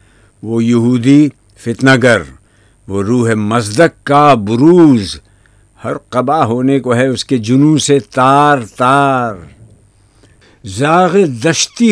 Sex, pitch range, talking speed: male, 100-130 Hz, 110 wpm